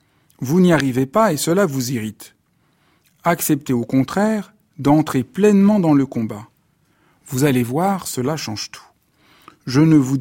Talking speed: 145 wpm